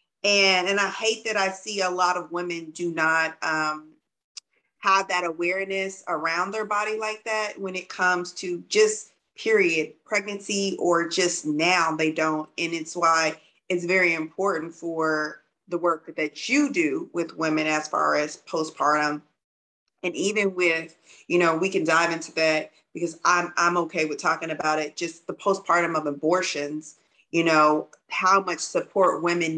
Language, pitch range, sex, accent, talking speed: English, 160-185 Hz, female, American, 165 wpm